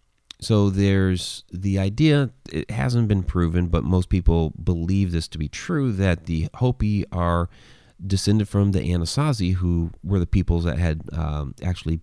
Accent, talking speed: American, 160 wpm